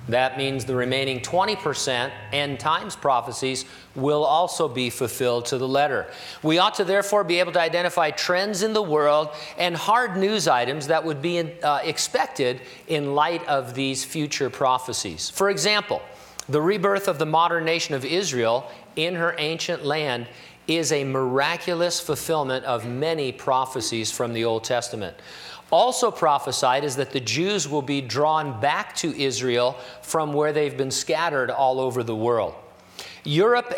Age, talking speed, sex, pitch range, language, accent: 50-69, 160 wpm, male, 130-165 Hz, English, American